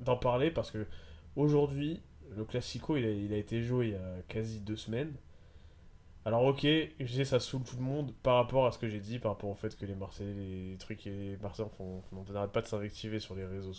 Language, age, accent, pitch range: French, 20-39, French, 105-140 Hz